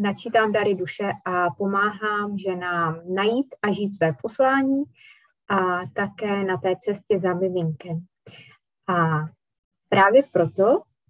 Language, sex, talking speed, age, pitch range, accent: Czech, female, 115 wpm, 20-39, 175-200 Hz, native